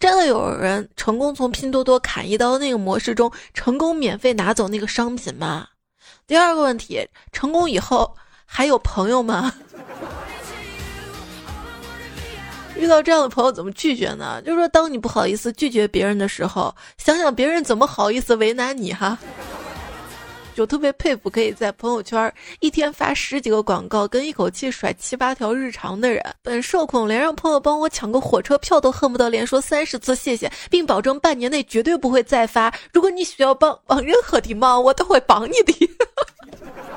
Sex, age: female, 20-39